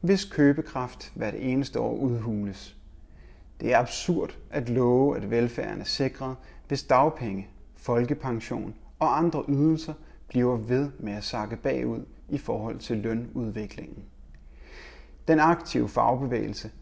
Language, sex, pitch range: Danish, male, 100-135 Hz